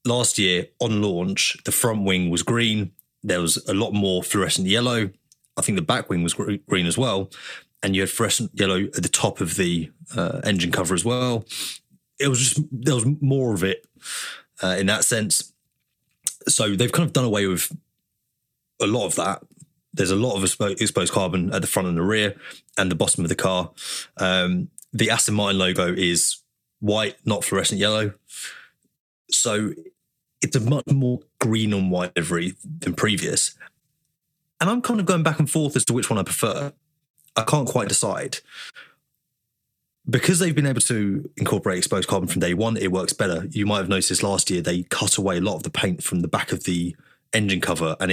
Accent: British